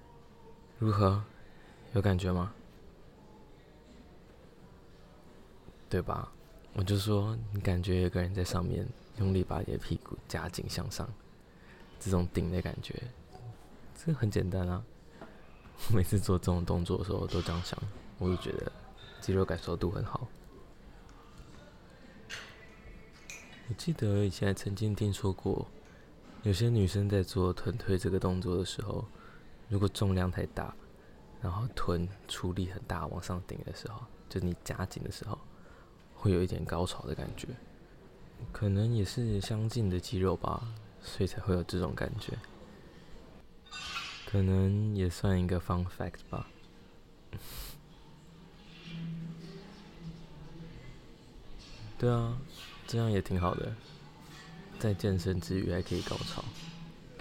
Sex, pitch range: male, 90-115 Hz